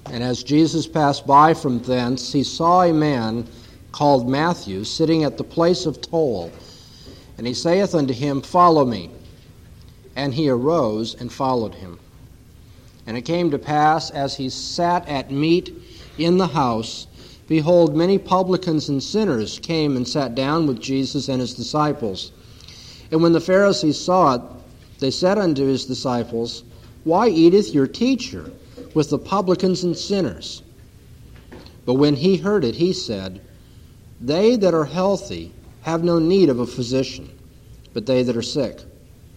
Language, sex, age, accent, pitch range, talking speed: English, male, 50-69, American, 115-160 Hz, 155 wpm